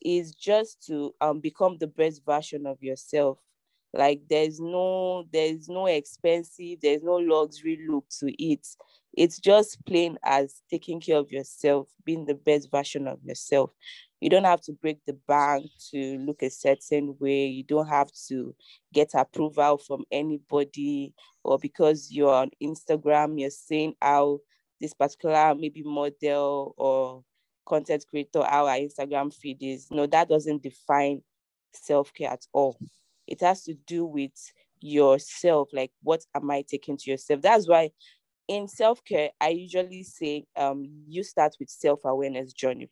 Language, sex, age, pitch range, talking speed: English, female, 20-39, 140-160 Hz, 160 wpm